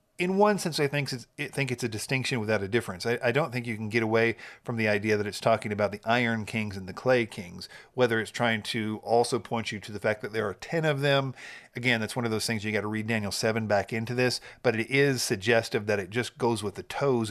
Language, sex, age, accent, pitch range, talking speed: English, male, 50-69, American, 110-130 Hz, 255 wpm